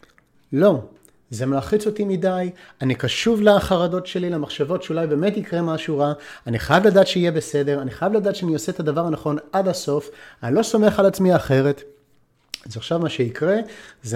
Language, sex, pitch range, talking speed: Hebrew, male, 130-190 Hz, 175 wpm